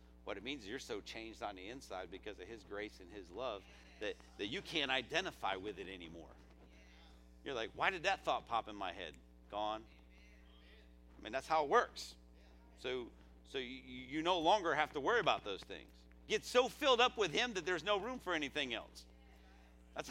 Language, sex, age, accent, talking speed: English, male, 50-69, American, 205 wpm